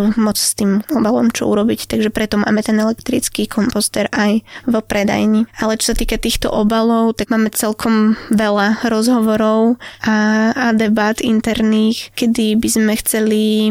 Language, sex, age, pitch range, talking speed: Slovak, female, 20-39, 210-230 Hz, 150 wpm